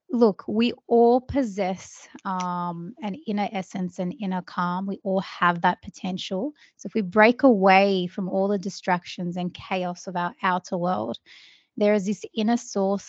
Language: English